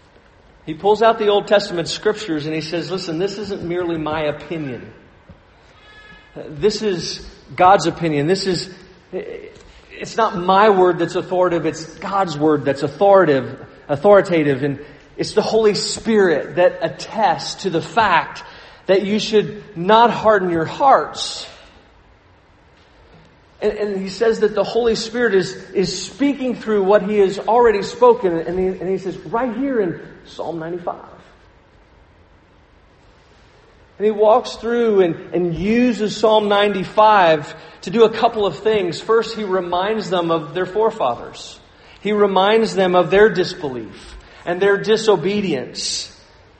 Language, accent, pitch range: English, American, 165-215 Hz